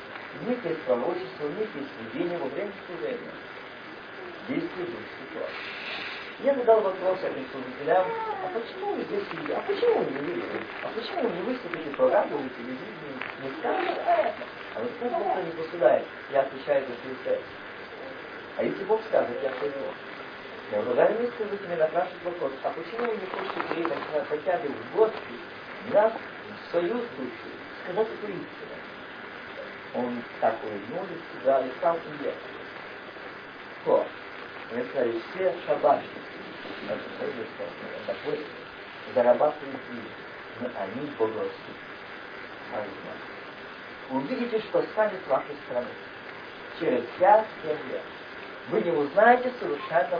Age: 40-59